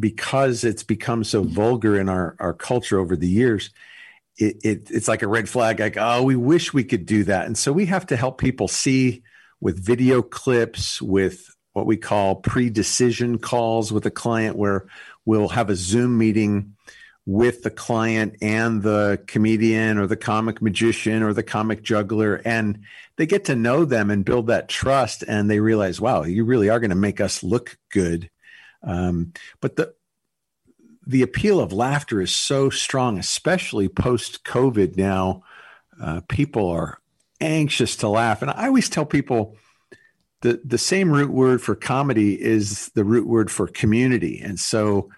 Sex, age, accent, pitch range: male, 50-69, American, 100-125 Hz